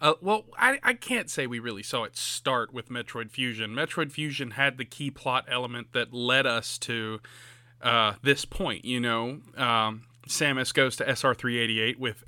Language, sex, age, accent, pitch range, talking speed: English, male, 30-49, American, 120-145 Hz, 175 wpm